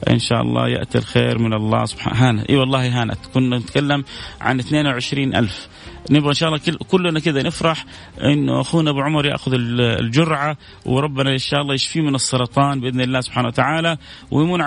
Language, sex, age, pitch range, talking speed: English, male, 30-49, 115-145 Hz, 170 wpm